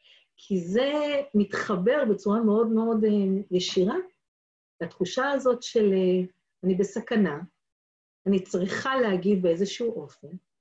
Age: 50-69